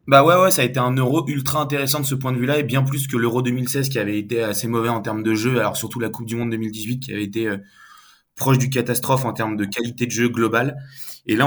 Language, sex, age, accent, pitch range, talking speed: French, male, 20-39, French, 110-130 Hz, 285 wpm